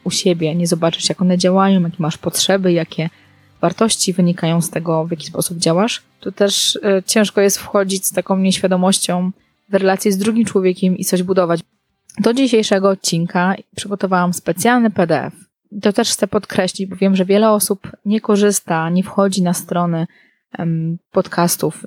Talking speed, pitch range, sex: 155 wpm, 180-210 Hz, female